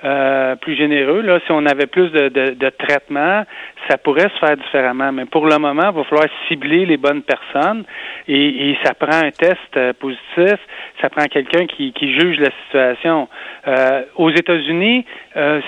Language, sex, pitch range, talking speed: French, male, 140-170 Hz, 180 wpm